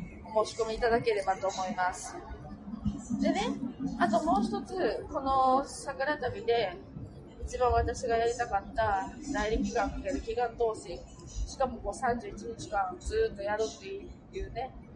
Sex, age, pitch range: female, 20-39, 210-280 Hz